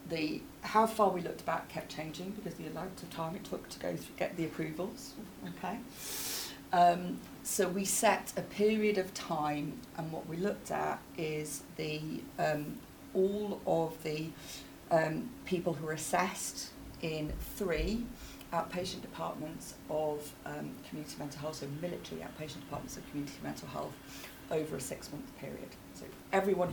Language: English